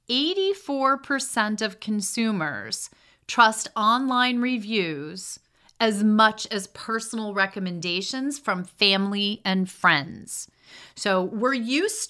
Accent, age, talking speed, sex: American, 30-49, 85 wpm, female